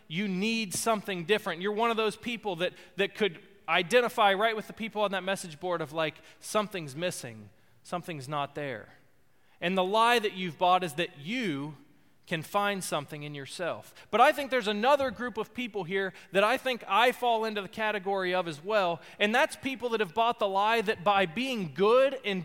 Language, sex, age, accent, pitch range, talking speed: English, male, 20-39, American, 180-240 Hz, 200 wpm